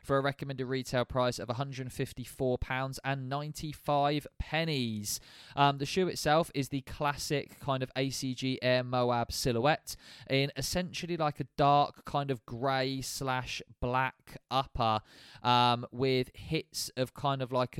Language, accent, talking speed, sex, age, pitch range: English, British, 140 wpm, male, 20-39, 120-140 Hz